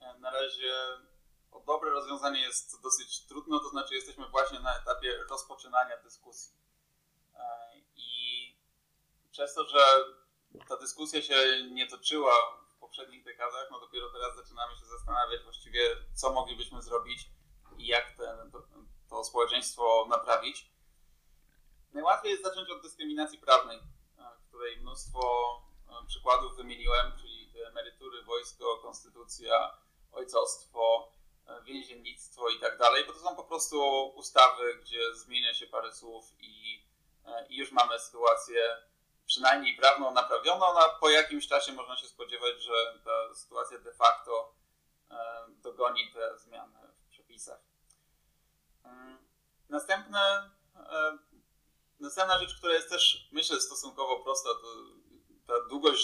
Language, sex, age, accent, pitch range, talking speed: Polish, male, 20-39, native, 120-170 Hz, 120 wpm